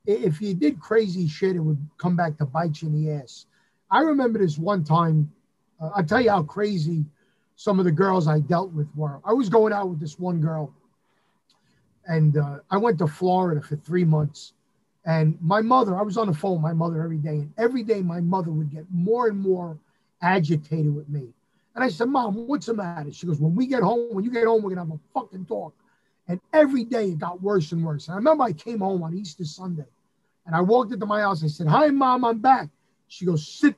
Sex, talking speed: male, 235 wpm